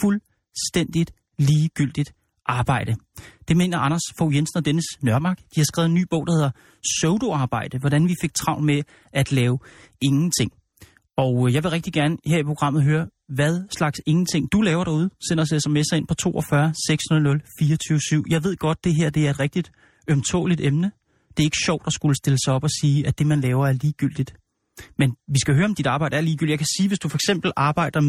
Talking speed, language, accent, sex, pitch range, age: 200 wpm, Danish, native, male, 140-165 Hz, 30-49